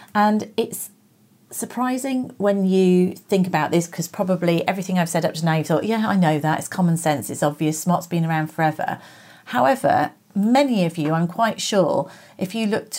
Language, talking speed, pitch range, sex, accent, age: English, 190 wpm, 170-205 Hz, female, British, 40-59